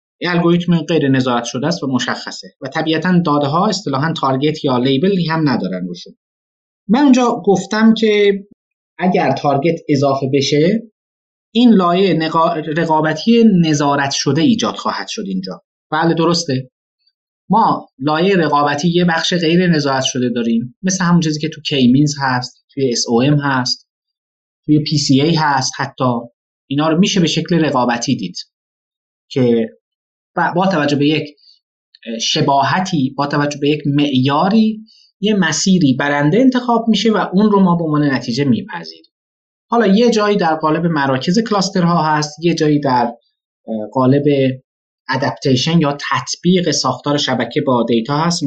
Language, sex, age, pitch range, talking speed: Persian, male, 30-49, 135-190 Hz, 140 wpm